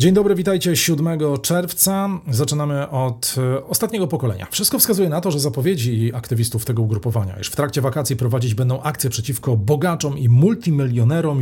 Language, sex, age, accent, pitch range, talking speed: Polish, male, 40-59, native, 115-155 Hz, 150 wpm